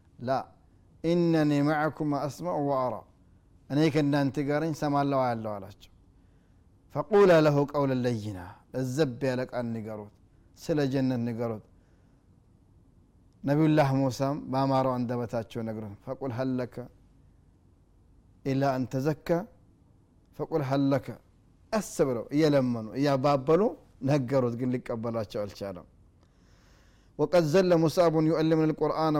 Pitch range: 105-155 Hz